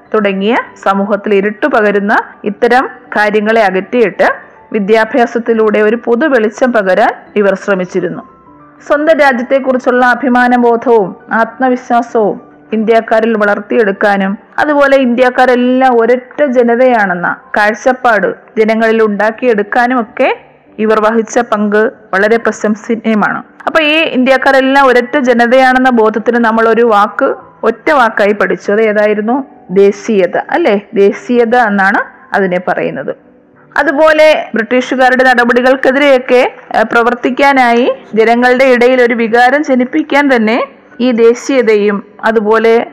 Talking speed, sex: 95 wpm, female